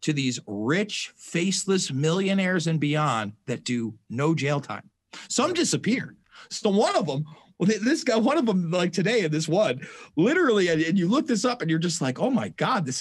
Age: 40-59